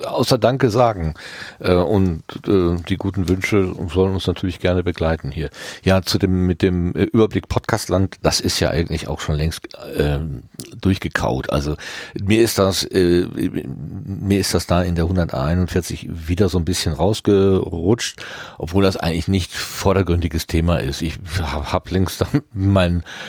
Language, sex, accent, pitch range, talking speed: German, male, German, 85-100 Hz, 150 wpm